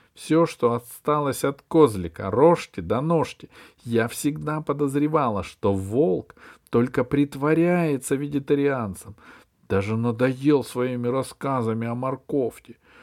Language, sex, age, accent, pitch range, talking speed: Russian, male, 50-69, native, 105-160 Hz, 105 wpm